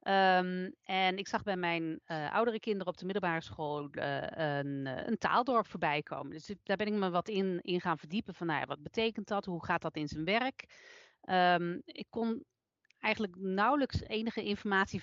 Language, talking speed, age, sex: Dutch, 195 wpm, 40-59, female